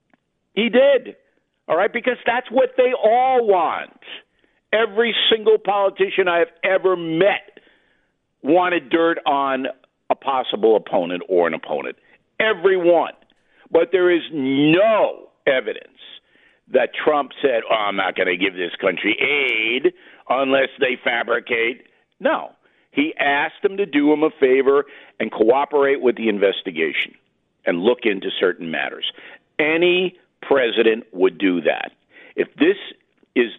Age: 50-69